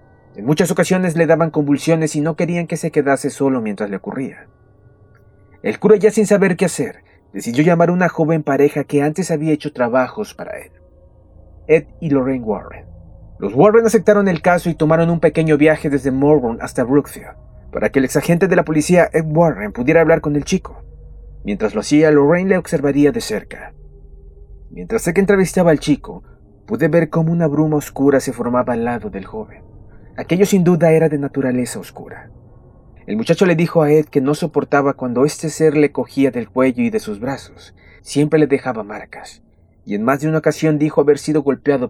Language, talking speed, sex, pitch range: Spanish, 190 wpm, male, 120-170 Hz